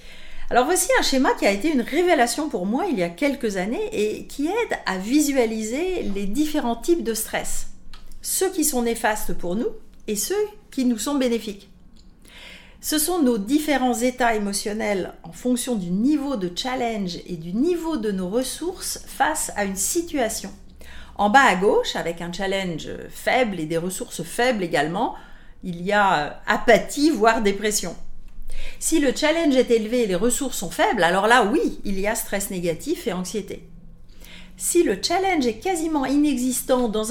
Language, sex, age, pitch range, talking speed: French, female, 40-59, 195-275 Hz, 170 wpm